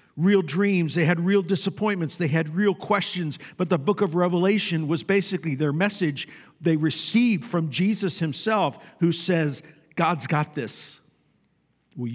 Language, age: English, 50-69